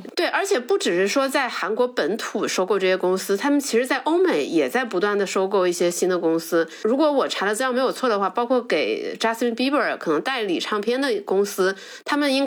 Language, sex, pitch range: Chinese, female, 205-310 Hz